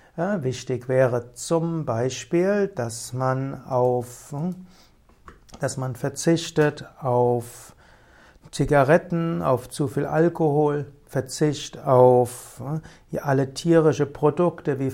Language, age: German, 60-79